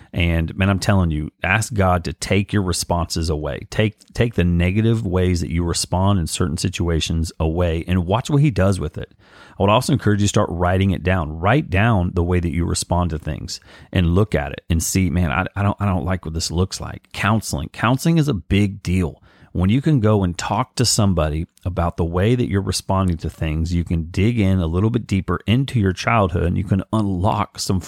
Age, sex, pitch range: 30-49, male, 85-105 Hz